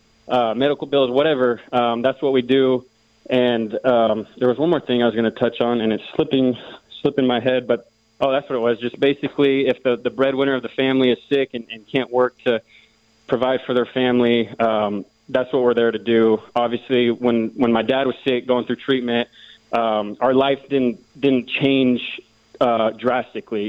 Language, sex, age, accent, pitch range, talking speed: English, male, 20-39, American, 115-130 Hz, 200 wpm